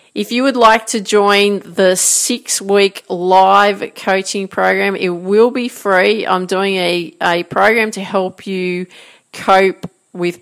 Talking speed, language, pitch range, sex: 145 wpm, English, 175-210 Hz, female